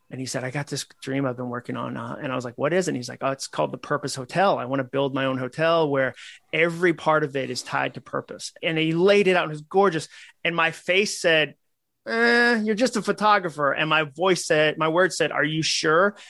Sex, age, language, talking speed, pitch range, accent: male, 30-49, English, 265 wpm, 145-195 Hz, American